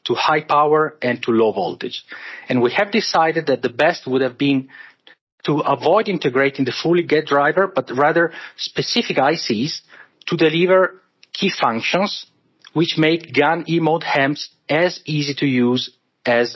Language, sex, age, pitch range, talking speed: English, male, 40-59, 125-160 Hz, 150 wpm